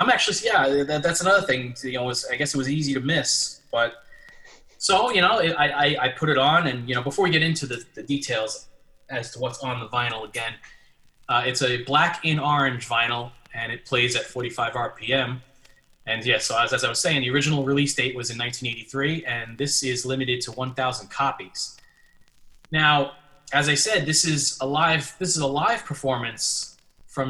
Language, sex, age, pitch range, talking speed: English, male, 20-39, 125-155 Hz, 200 wpm